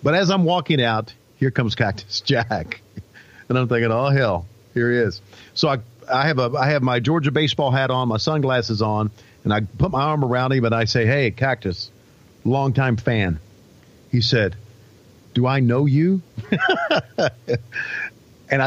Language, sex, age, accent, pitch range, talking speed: English, male, 50-69, American, 115-155 Hz, 170 wpm